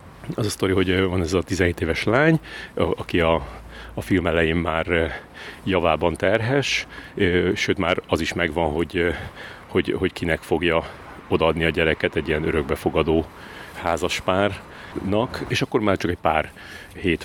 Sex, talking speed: male, 155 wpm